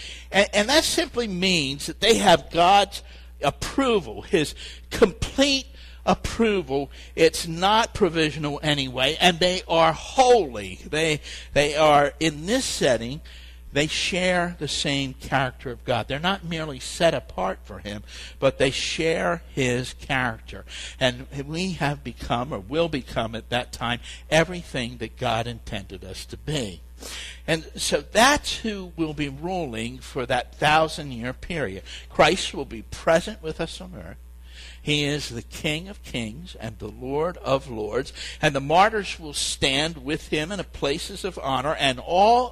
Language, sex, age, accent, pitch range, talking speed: English, male, 60-79, American, 105-170 Hz, 150 wpm